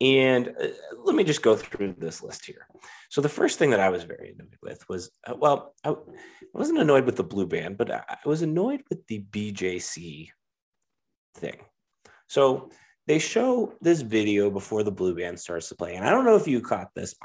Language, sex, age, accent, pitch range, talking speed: English, male, 30-49, American, 130-205 Hz, 195 wpm